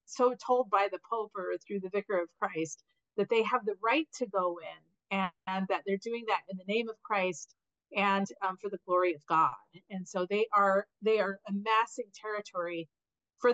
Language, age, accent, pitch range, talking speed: English, 40-59, American, 185-235 Hz, 205 wpm